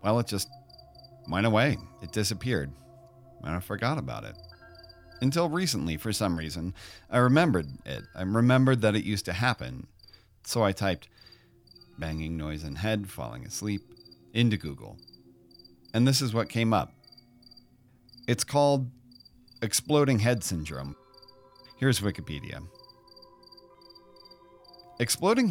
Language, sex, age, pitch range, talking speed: English, male, 40-59, 90-135 Hz, 120 wpm